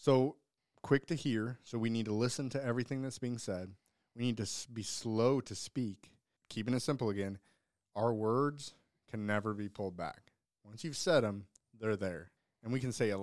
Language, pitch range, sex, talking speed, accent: English, 100-120 Hz, male, 195 wpm, American